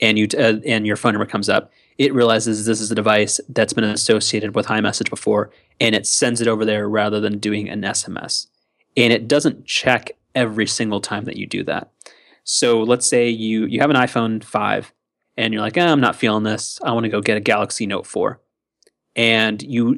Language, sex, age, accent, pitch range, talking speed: English, male, 30-49, American, 110-125 Hz, 215 wpm